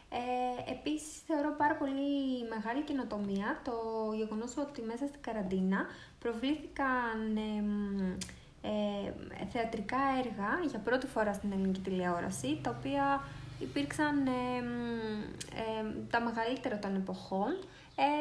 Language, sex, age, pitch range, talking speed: Greek, female, 20-39, 210-270 Hz, 110 wpm